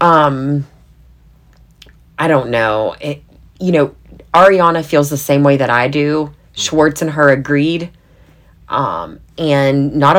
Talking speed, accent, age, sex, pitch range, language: 130 wpm, American, 30-49, female, 140-185 Hz, English